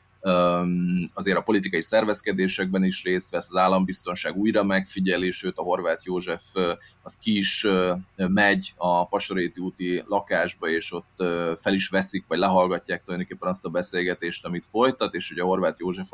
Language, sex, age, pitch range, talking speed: Hungarian, male, 30-49, 90-105 Hz, 150 wpm